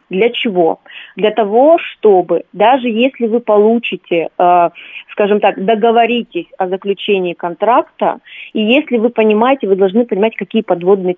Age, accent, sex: 30-49, native, female